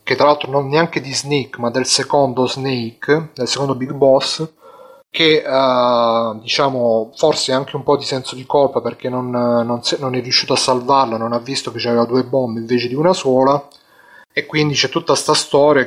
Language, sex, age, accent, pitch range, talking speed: Italian, male, 30-49, native, 120-145 Hz, 190 wpm